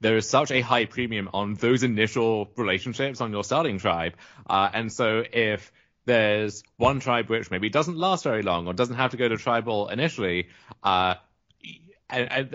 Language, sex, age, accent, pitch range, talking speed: English, male, 30-49, British, 105-130 Hz, 175 wpm